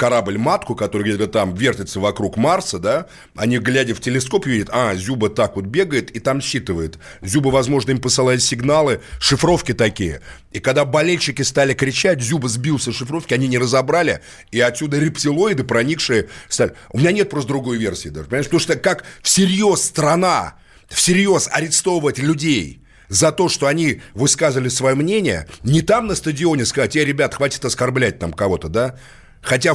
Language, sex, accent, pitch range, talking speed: Russian, male, native, 110-150 Hz, 165 wpm